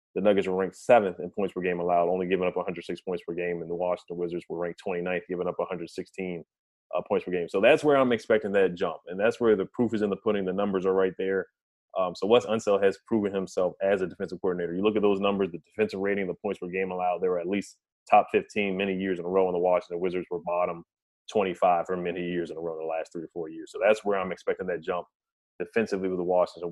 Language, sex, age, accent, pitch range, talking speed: English, male, 30-49, American, 90-105 Hz, 265 wpm